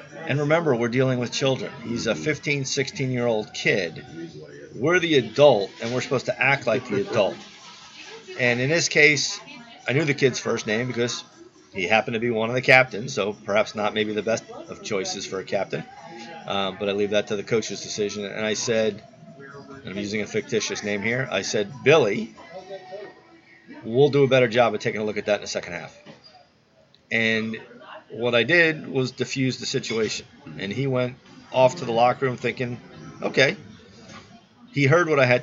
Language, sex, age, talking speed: English, male, 40-59, 190 wpm